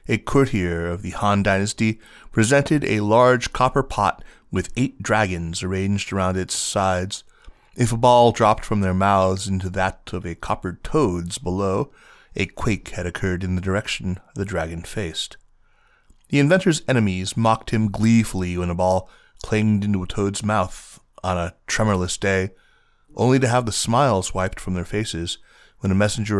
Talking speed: 165 wpm